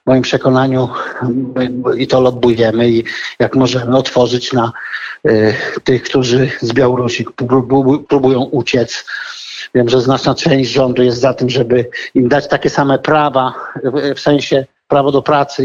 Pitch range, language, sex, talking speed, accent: 125-140 Hz, Polish, male, 150 wpm, native